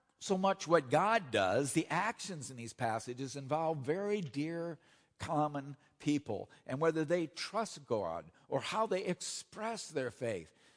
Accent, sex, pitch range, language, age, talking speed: American, male, 130-170 Hz, English, 50-69, 145 wpm